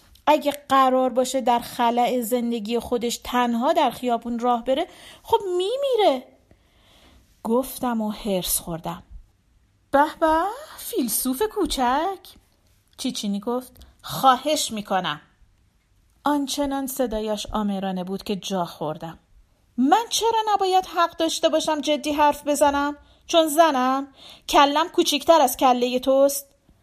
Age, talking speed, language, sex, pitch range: 40-59, 110 wpm, Persian, female, 235-325 Hz